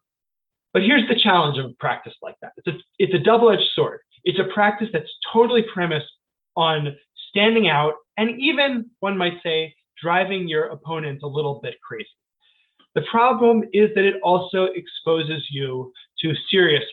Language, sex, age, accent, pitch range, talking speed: English, male, 20-39, American, 155-210 Hz, 160 wpm